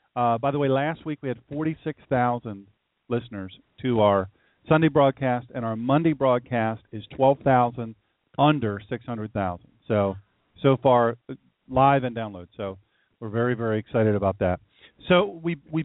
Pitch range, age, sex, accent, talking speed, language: 115-145 Hz, 40-59, male, American, 165 wpm, English